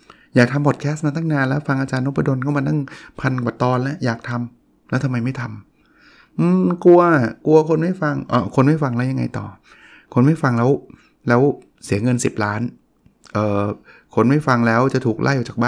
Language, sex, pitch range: Thai, male, 115-145 Hz